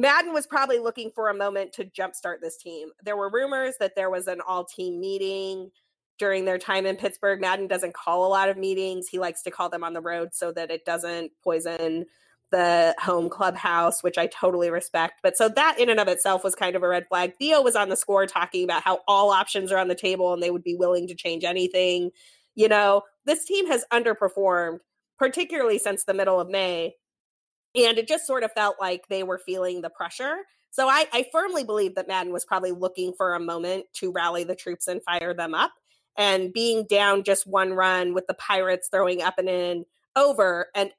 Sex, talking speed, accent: female, 215 wpm, American